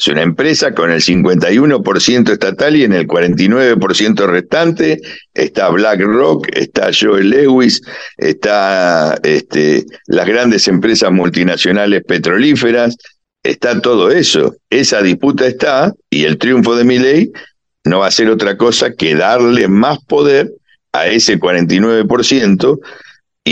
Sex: male